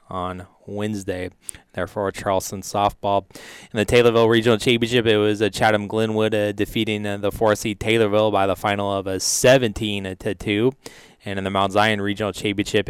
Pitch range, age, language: 100-110 Hz, 20-39, English